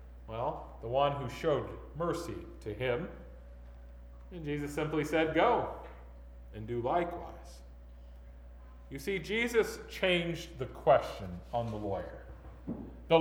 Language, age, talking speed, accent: English, 40-59, 120 wpm, American